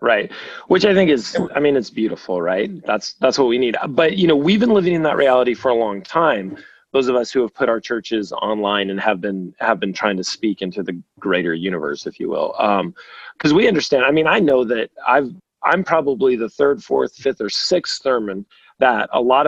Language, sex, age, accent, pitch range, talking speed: English, male, 30-49, American, 100-140 Hz, 230 wpm